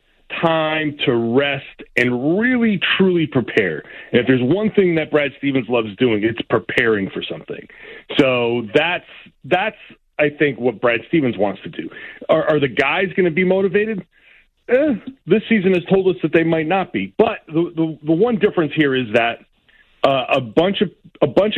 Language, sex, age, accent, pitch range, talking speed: English, male, 40-59, American, 125-180 Hz, 185 wpm